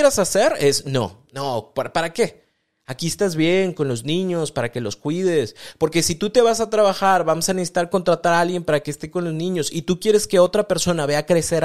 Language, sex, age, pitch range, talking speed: Spanish, male, 30-49, 130-175 Hz, 225 wpm